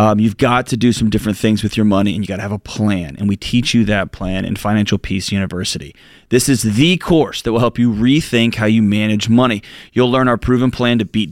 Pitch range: 105-130 Hz